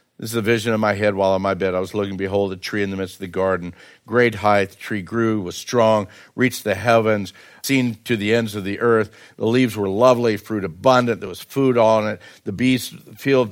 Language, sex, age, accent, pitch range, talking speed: English, male, 60-79, American, 105-130 Hz, 245 wpm